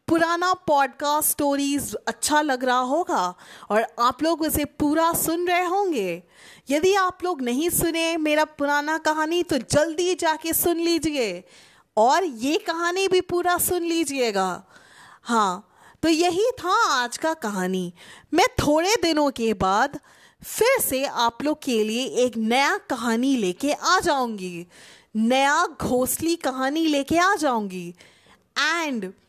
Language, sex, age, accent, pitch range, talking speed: Hindi, female, 30-49, native, 240-325 Hz, 135 wpm